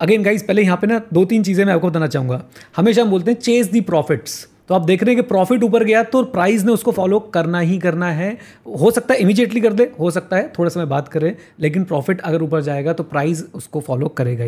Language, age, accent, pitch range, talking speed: Hindi, 30-49, native, 170-220 Hz, 255 wpm